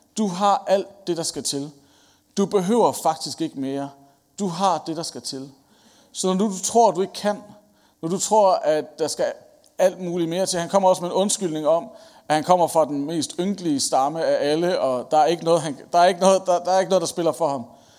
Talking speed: 205 wpm